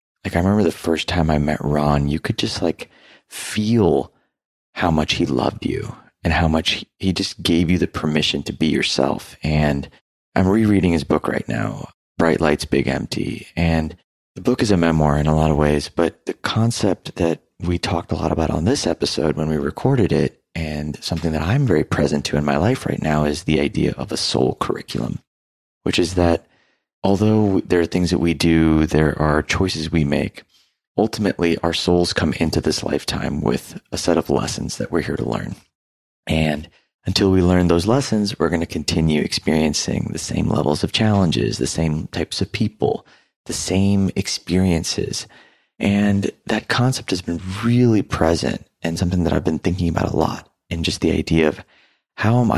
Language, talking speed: English, 190 wpm